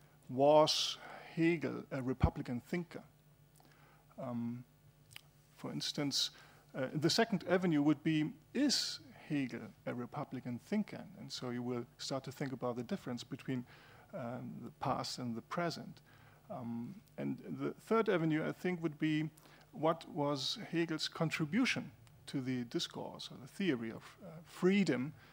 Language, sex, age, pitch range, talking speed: German, male, 40-59, 130-160 Hz, 135 wpm